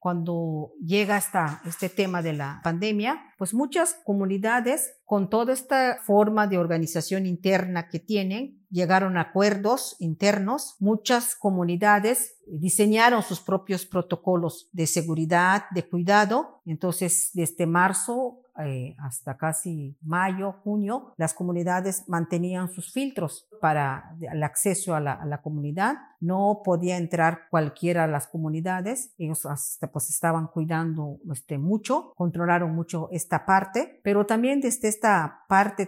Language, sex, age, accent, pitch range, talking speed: Spanish, female, 50-69, American, 160-205 Hz, 130 wpm